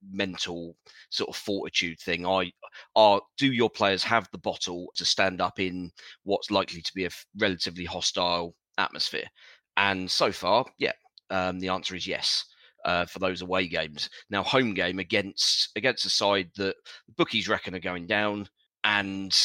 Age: 30-49